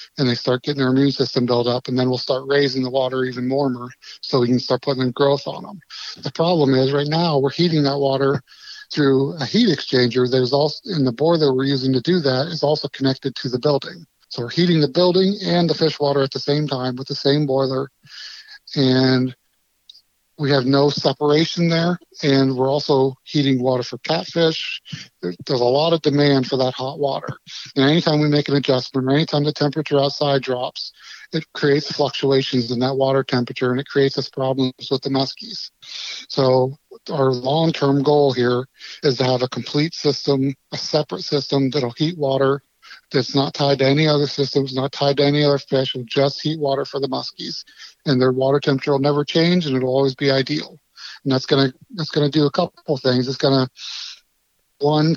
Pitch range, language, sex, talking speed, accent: 130-150 Hz, English, male, 205 wpm, American